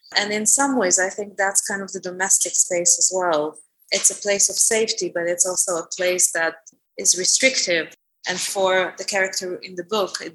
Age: 20-39